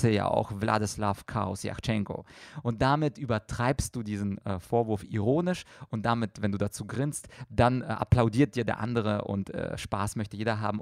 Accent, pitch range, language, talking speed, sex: German, 110-140 Hz, German, 165 wpm, male